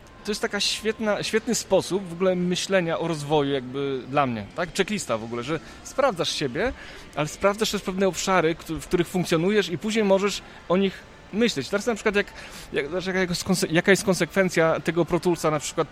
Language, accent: Polish, native